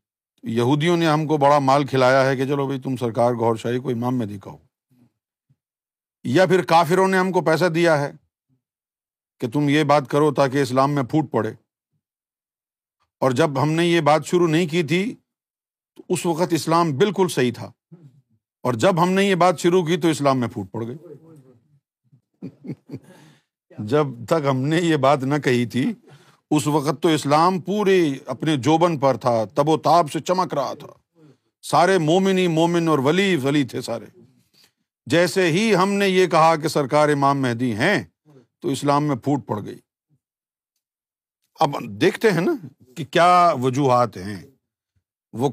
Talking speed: 165 wpm